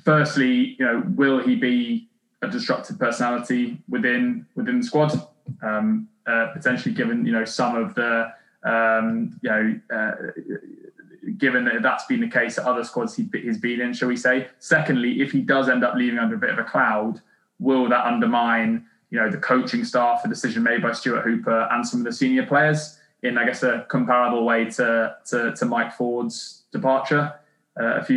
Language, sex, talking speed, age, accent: English, male, 190 wpm, 20-39, British